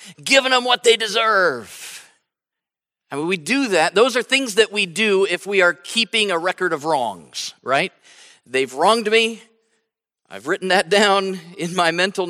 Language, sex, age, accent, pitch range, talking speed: English, male, 50-69, American, 160-195 Hz, 170 wpm